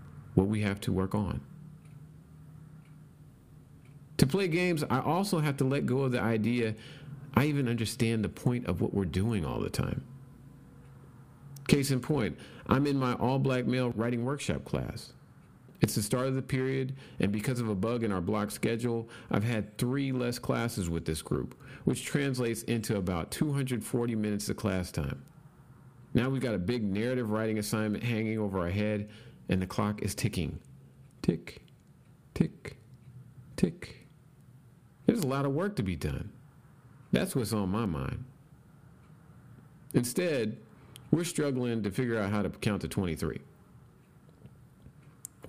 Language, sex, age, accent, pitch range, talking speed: English, male, 50-69, American, 105-135 Hz, 155 wpm